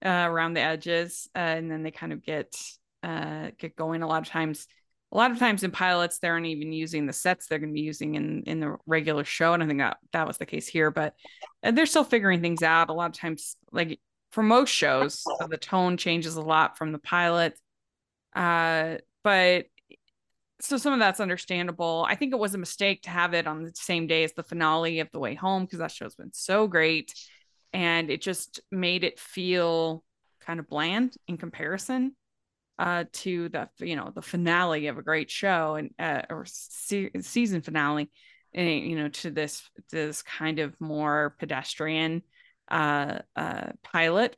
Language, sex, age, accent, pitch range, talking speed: English, female, 20-39, American, 160-190 Hz, 195 wpm